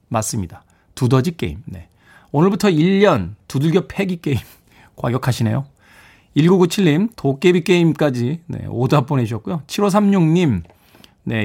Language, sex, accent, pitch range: Korean, male, native, 110-175 Hz